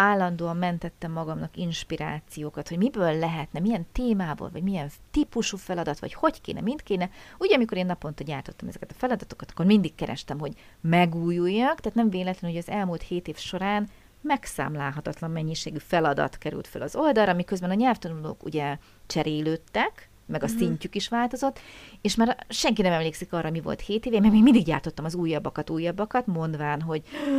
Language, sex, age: Hungarian, female, 30-49